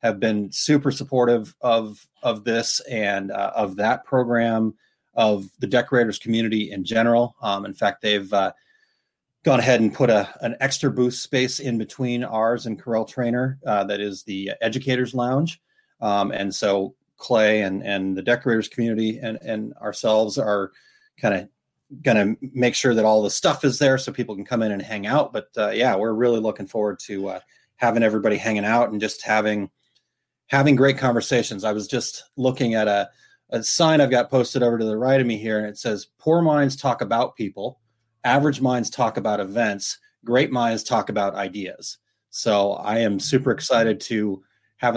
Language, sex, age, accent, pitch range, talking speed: English, male, 30-49, American, 105-125 Hz, 185 wpm